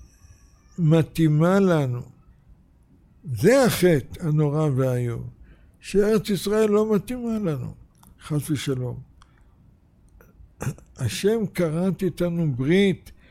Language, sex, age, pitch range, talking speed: Hebrew, male, 60-79, 140-180 Hz, 75 wpm